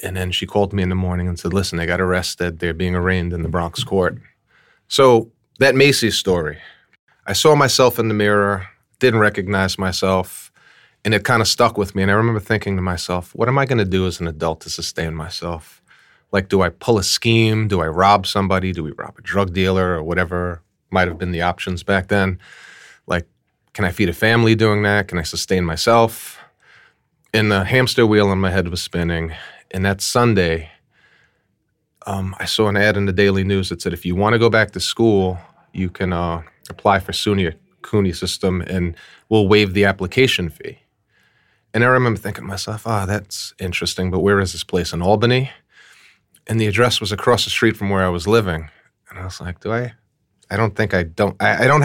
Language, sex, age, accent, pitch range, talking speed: English, male, 30-49, American, 90-110 Hz, 215 wpm